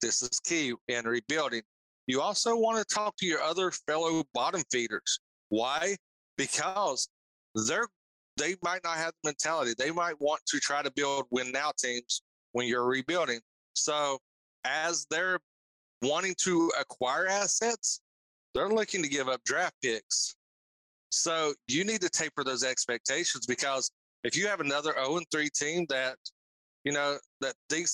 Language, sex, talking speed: English, male, 150 wpm